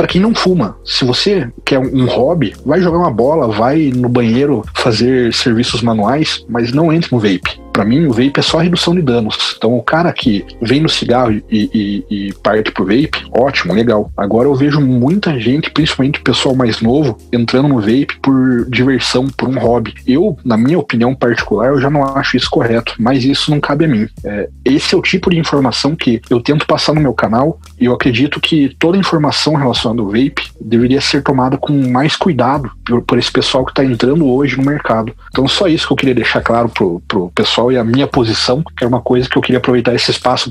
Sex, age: male, 40-59